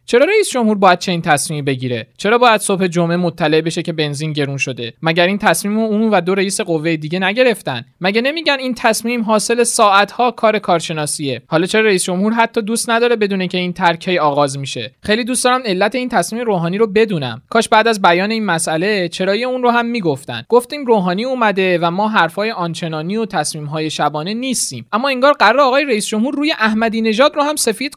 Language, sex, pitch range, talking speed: Persian, male, 165-230 Hz, 205 wpm